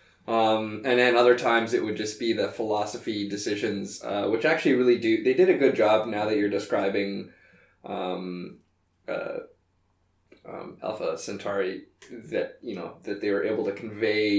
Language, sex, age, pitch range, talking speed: English, male, 20-39, 100-120 Hz, 165 wpm